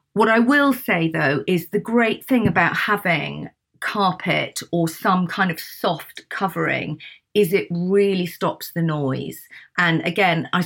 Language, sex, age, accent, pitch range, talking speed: English, female, 40-59, British, 165-210 Hz, 150 wpm